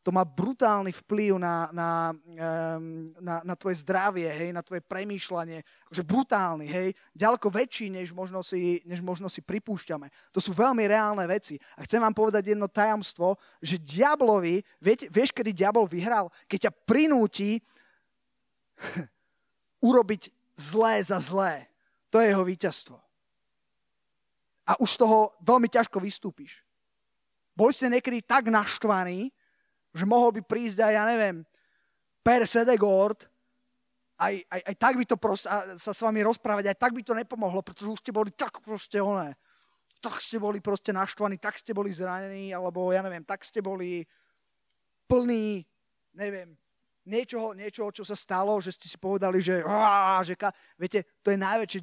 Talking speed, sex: 150 wpm, male